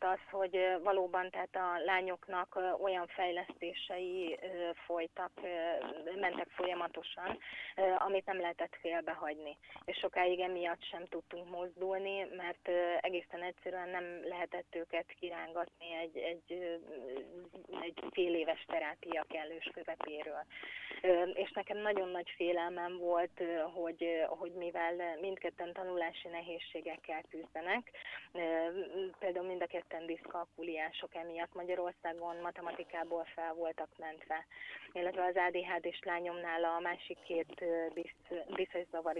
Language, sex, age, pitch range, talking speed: Hungarian, female, 30-49, 170-190 Hz, 105 wpm